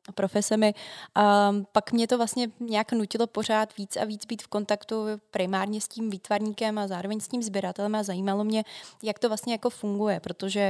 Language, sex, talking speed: Czech, female, 185 wpm